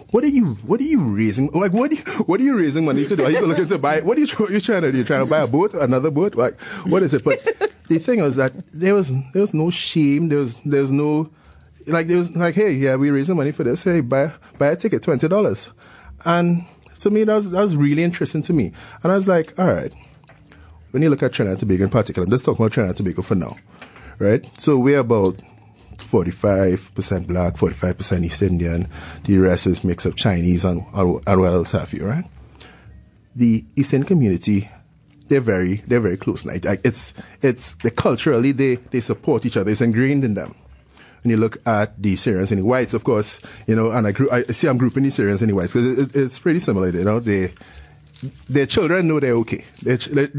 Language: English